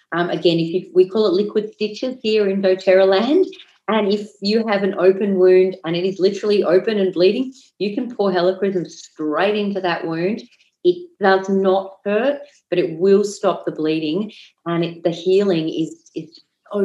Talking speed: 185 wpm